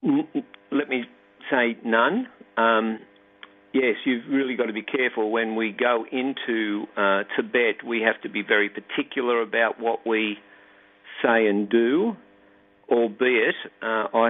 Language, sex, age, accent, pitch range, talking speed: English, male, 50-69, Australian, 105-115 Hz, 140 wpm